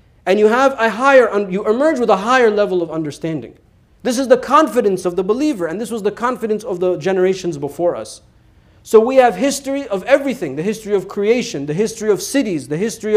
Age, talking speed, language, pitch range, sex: 40-59, 210 wpm, English, 185-250 Hz, male